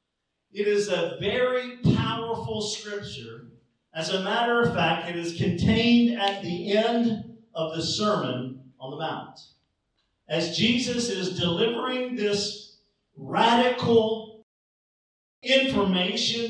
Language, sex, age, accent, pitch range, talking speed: English, male, 50-69, American, 180-235 Hz, 110 wpm